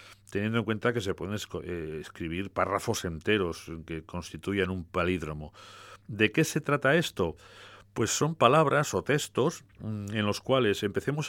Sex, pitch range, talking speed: male, 95-115 Hz, 145 wpm